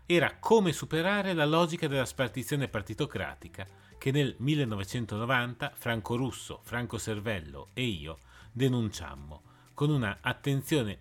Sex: male